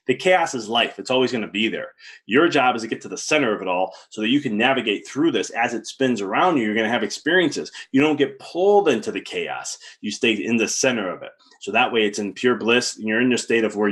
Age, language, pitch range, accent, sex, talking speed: 30-49, English, 115-150 Hz, American, male, 280 wpm